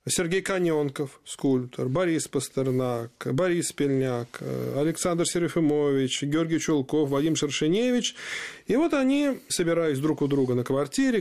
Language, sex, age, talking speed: Russian, male, 20-39, 120 wpm